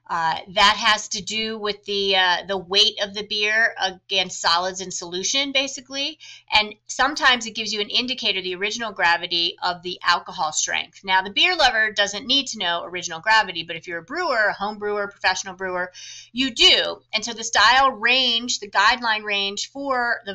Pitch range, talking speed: 190-240 Hz, 190 wpm